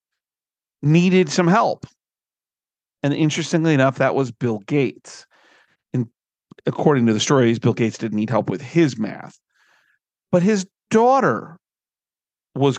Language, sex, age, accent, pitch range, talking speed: English, male, 40-59, American, 115-155 Hz, 125 wpm